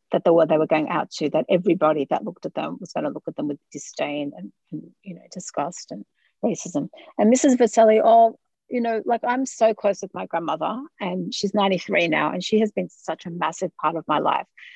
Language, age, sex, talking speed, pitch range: English, 40-59, female, 225 wpm, 160-205 Hz